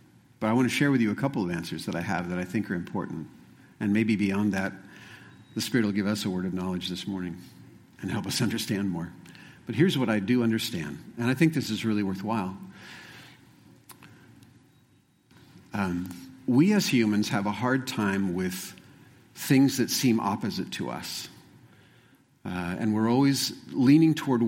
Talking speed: 180 wpm